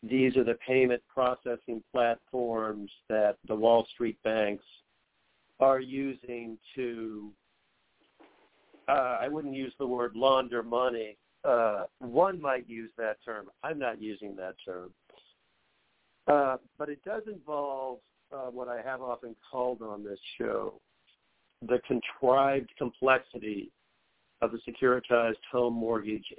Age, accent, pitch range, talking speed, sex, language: 50-69, American, 115-130 Hz, 125 wpm, male, English